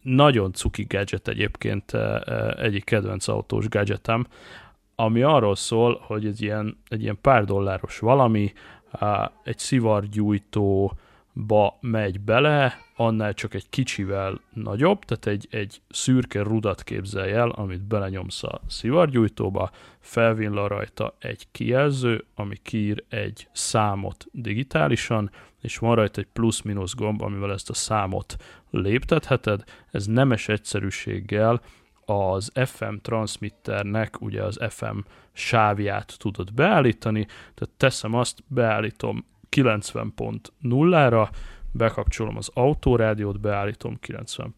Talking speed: 110 wpm